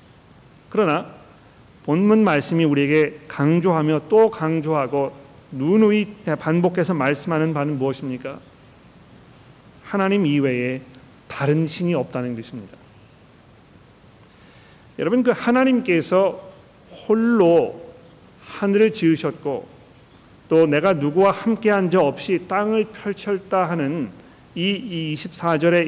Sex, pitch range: male, 145-200 Hz